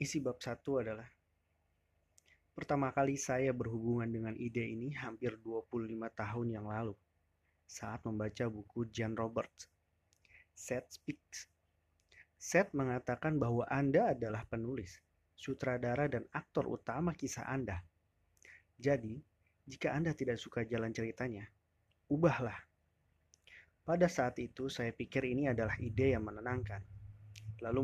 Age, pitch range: 30-49, 90-130 Hz